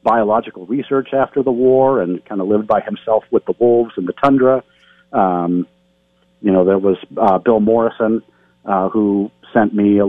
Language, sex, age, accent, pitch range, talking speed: English, male, 40-59, American, 90-115 Hz, 180 wpm